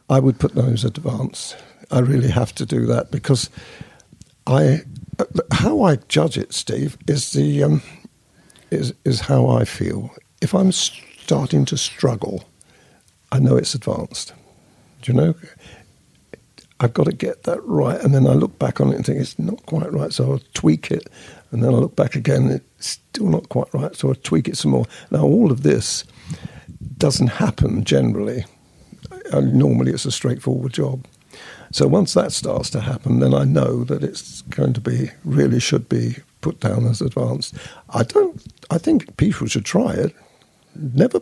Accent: British